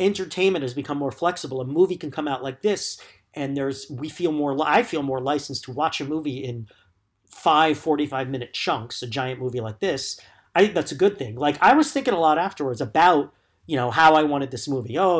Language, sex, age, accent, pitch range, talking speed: English, male, 40-59, American, 125-170 Hz, 225 wpm